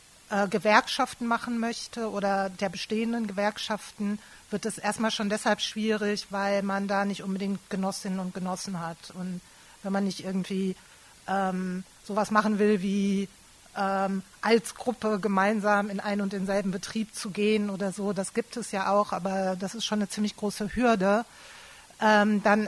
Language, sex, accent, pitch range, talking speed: German, female, German, 190-215 Hz, 160 wpm